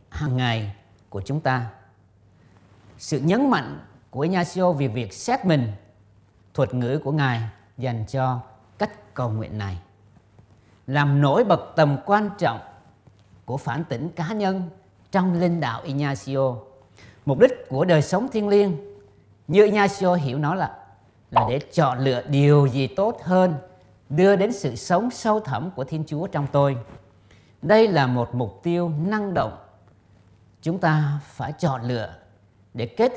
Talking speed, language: 150 wpm, Vietnamese